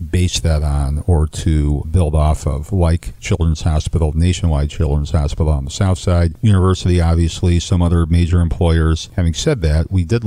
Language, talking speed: English, 170 wpm